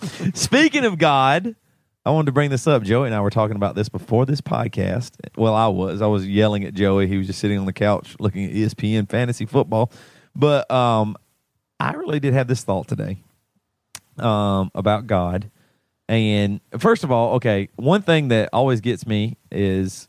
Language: English